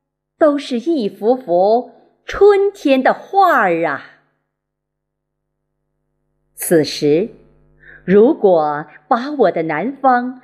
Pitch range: 200-300 Hz